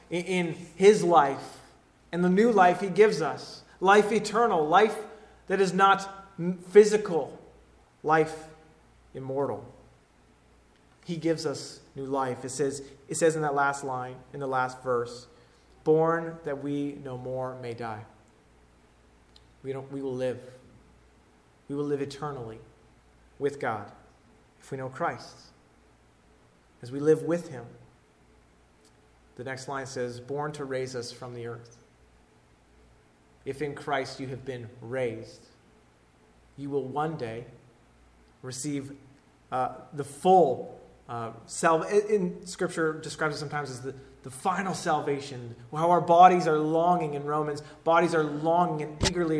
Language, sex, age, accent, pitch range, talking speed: English, male, 30-49, American, 110-155 Hz, 135 wpm